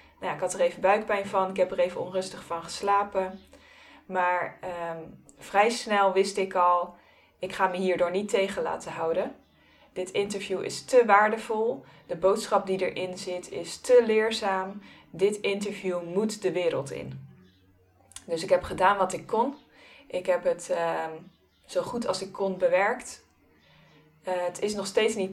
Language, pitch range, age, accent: Dutch, 175-205 Hz, 20-39, Dutch